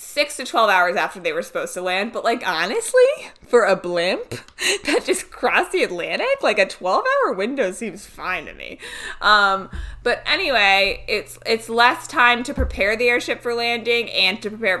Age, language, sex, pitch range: 20-39, English, female, 180-245 Hz